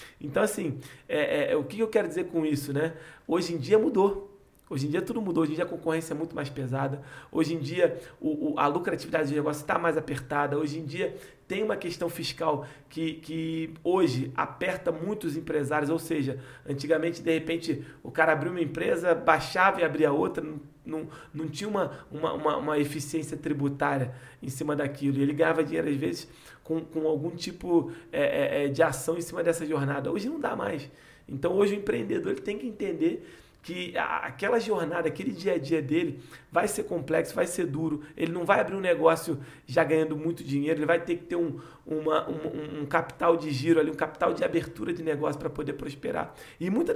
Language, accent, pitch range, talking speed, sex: Portuguese, Brazilian, 150-170 Hz, 190 wpm, male